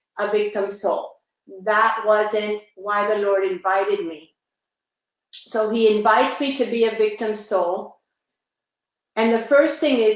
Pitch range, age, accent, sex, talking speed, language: 210-255 Hz, 50-69, American, female, 140 wpm, English